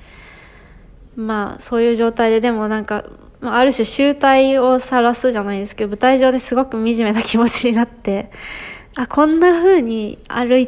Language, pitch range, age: Japanese, 210-250 Hz, 20-39